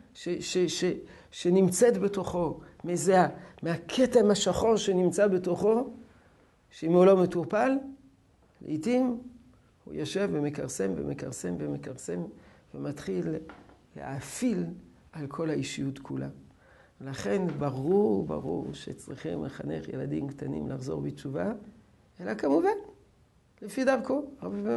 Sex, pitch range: male, 150-210 Hz